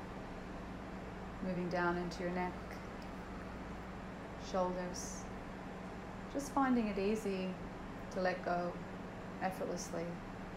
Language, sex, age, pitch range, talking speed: English, female, 30-49, 180-195 Hz, 80 wpm